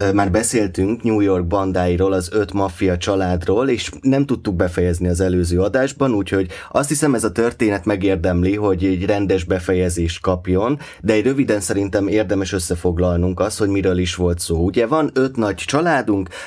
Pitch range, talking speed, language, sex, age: 90-110 Hz, 165 wpm, Hungarian, male, 20-39